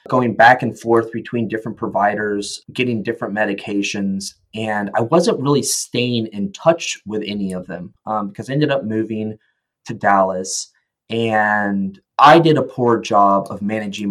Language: English